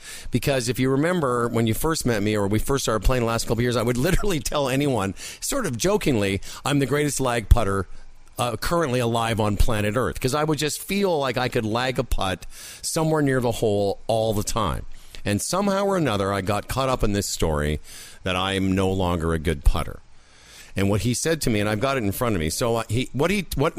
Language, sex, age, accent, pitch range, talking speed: English, male, 50-69, American, 100-140 Hz, 240 wpm